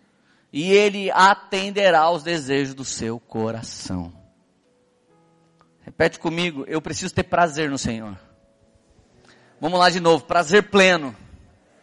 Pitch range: 110-175 Hz